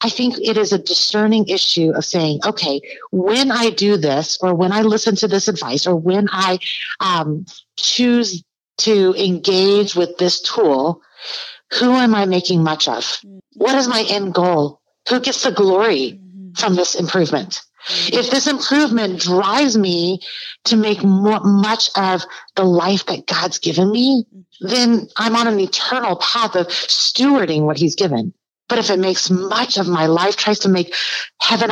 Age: 40-59